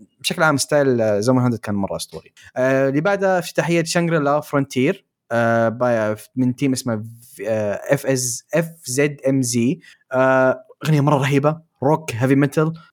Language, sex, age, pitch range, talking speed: Arabic, male, 20-39, 125-165 Hz, 160 wpm